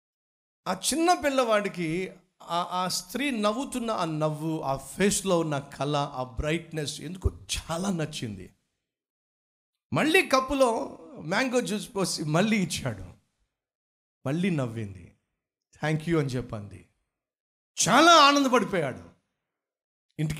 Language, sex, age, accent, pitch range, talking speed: Telugu, male, 50-69, native, 135-210 Hz, 95 wpm